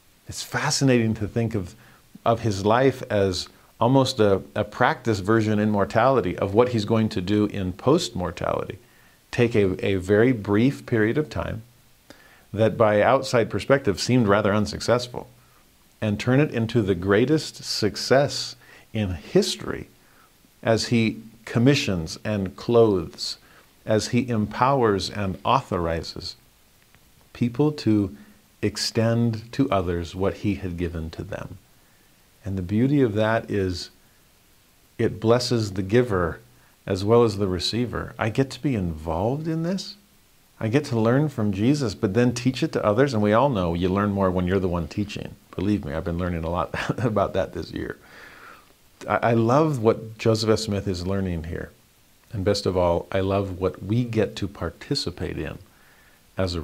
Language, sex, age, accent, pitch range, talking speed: English, male, 50-69, American, 95-120 Hz, 160 wpm